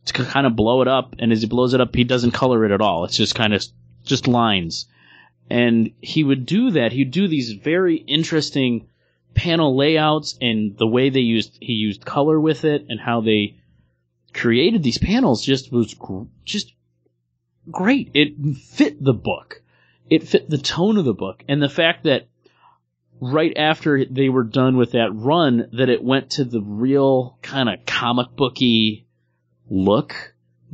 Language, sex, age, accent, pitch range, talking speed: English, male, 30-49, American, 100-135 Hz, 175 wpm